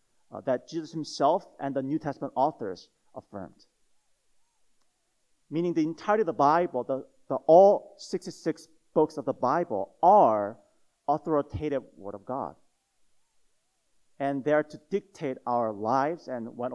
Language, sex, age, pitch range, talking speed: English, male, 30-49, 120-155 Hz, 135 wpm